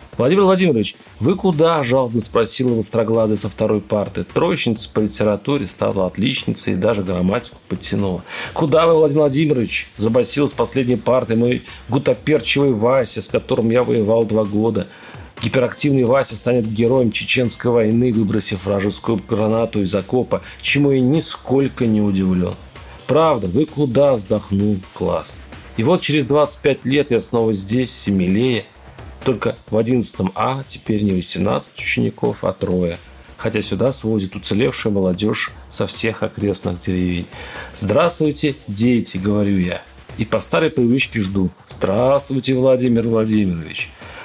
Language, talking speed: Russian, 135 wpm